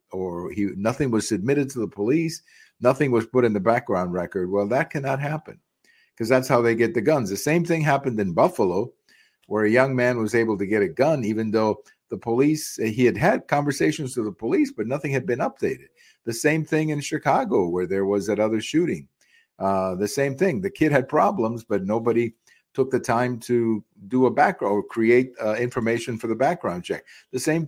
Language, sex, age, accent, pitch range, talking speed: English, male, 50-69, American, 100-155 Hz, 210 wpm